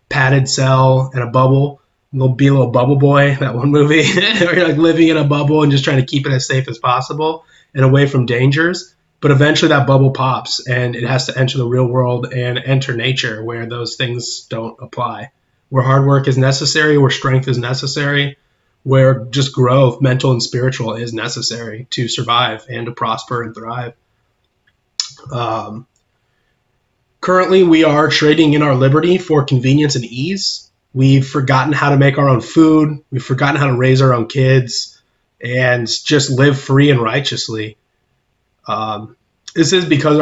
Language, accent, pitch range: English, American, 125-145 Hz